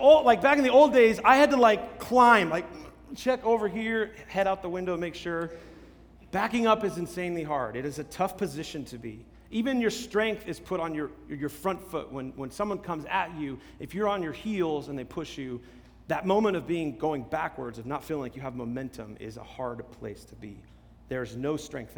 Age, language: 30-49, English